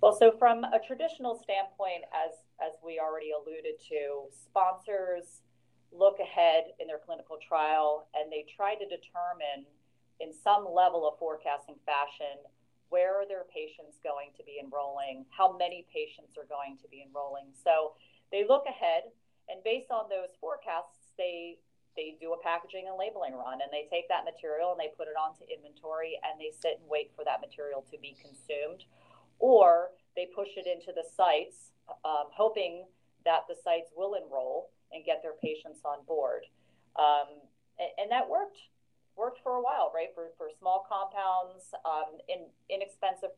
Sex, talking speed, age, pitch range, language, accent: female, 170 wpm, 30-49, 155-210 Hz, English, American